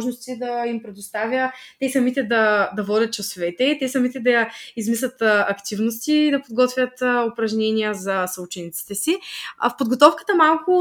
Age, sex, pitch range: 20-39, female, 220-275 Hz